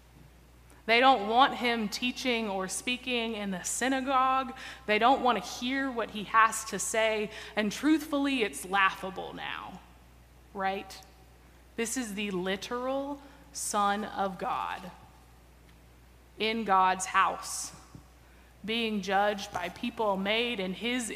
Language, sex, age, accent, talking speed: English, female, 20-39, American, 120 wpm